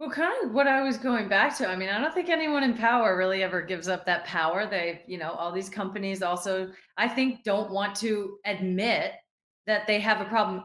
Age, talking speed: 30-49, 230 wpm